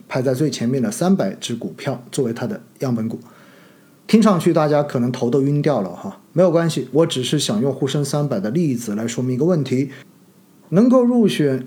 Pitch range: 130-175 Hz